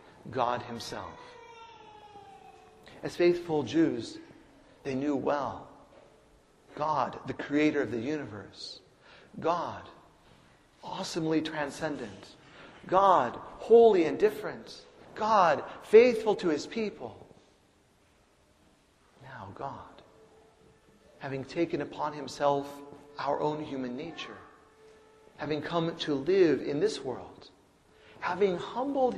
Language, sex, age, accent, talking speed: English, male, 40-59, American, 95 wpm